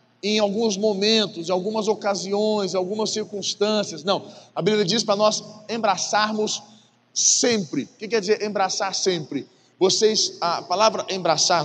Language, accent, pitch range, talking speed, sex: Portuguese, Brazilian, 155-210 Hz, 140 wpm, male